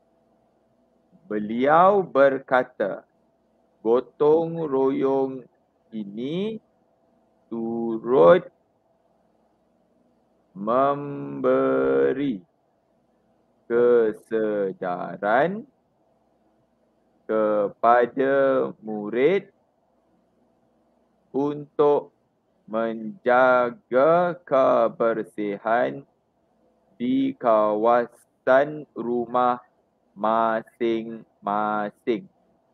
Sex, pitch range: male, 105-135 Hz